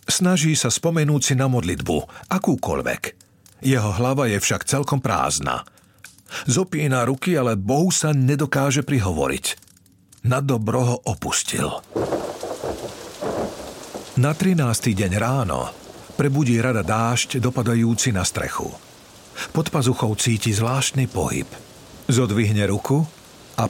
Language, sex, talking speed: Slovak, male, 105 wpm